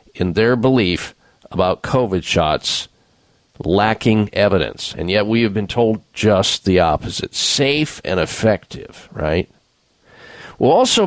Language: English